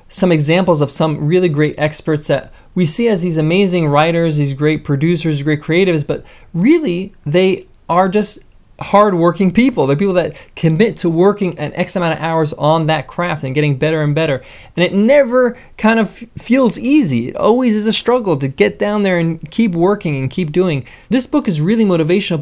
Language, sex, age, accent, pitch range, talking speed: English, male, 20-39, American, 145-185 Hz, 200 wpm